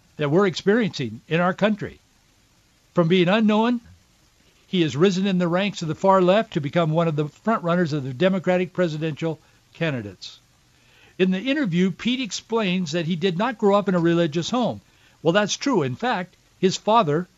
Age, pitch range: 60-79, 155-195 Hz